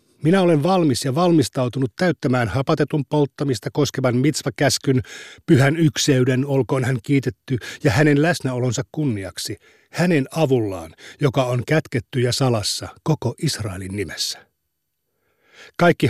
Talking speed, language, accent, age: 110 wpm, Finnish, native, 50-69